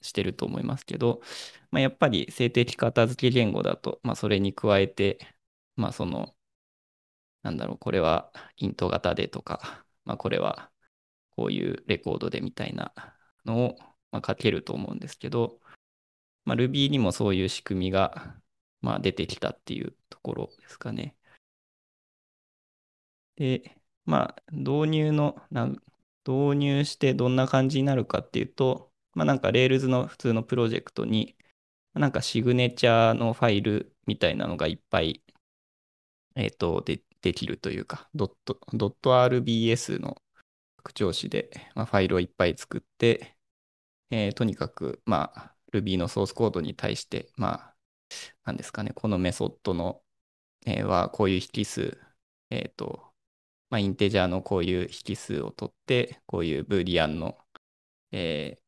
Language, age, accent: Japanese, 20-39, native